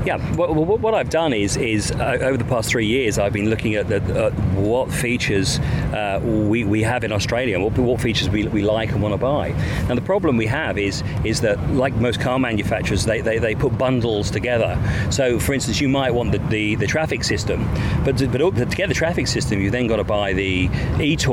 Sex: male